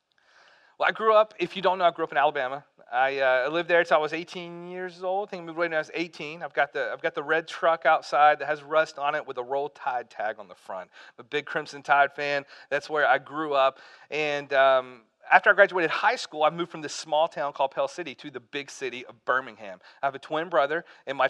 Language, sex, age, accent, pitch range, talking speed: English, male, 40-59, American, 145-175 Hz, 270 wpm